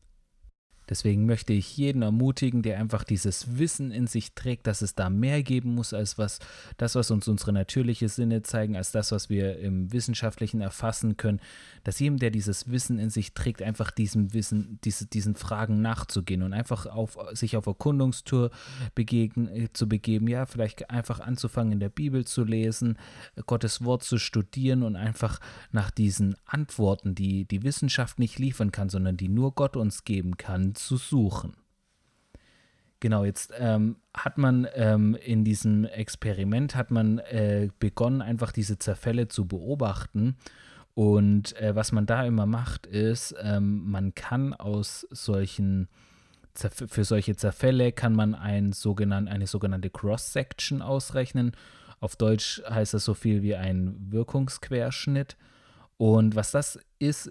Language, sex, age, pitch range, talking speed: German, male, 30-49, 105-120 Hz, 155 wpm